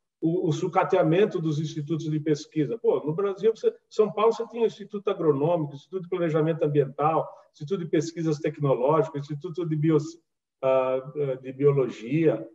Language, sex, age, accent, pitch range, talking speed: Portuguese, male, 40-59, Brazilian, 150-200 Hz, 165 wpm